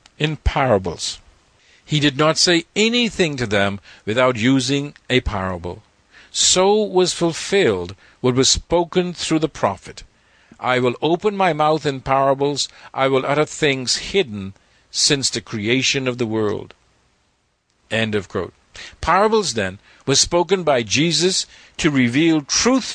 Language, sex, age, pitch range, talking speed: English, male, 50-69, 105-170 Hz, 135 wpm